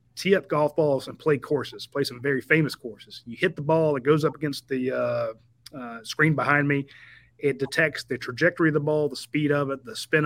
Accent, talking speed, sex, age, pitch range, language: American, 230 wpm, male, 30-49, 120-145 Hz, English